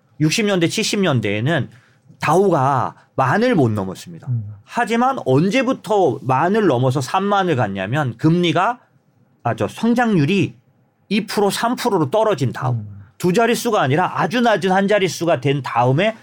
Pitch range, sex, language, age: 125-185 Hz, male, Korean, 40-59